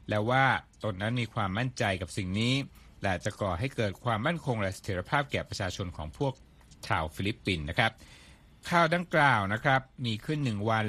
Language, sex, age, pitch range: Thai, male, 60-79, 95-125 Hz